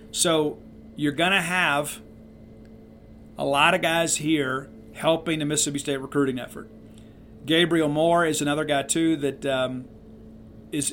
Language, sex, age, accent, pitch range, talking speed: English, male, 50-69, American, 135-160 Hz, 135 wpm